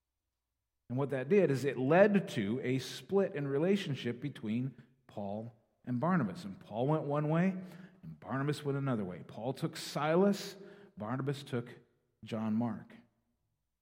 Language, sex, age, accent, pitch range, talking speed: English, male, 40-59, American, 110-145 Hz, 145 wpm